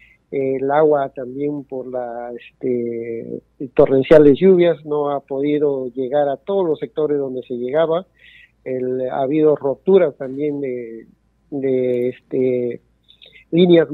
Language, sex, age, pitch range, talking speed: Spanish, male, 50-69, 135-165 Hz, 125 wpm